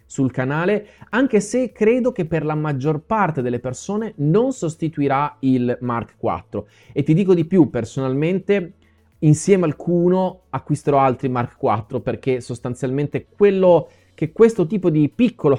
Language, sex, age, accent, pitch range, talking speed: Italian, male, 30-49, native, 120-165 Hz, 145 wpm